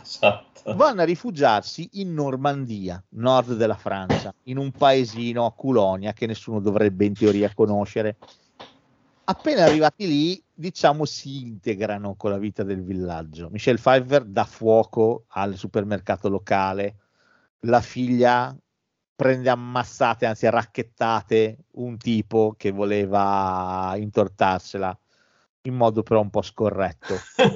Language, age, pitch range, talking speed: Italian, 40-59, 105-140 Hz, 120 wpm